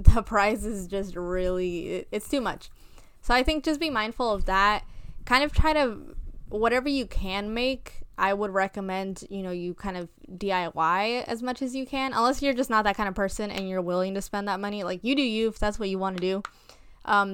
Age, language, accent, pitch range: 10-29, English, American, 190-230 Hz